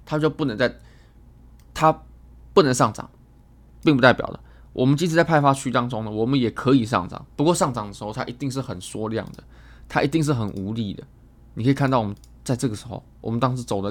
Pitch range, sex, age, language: 100-140 Hz, male, 20-39, Chinese